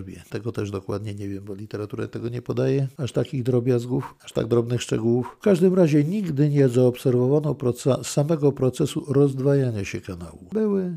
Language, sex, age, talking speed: Polish, male, 50-69, 160 wpm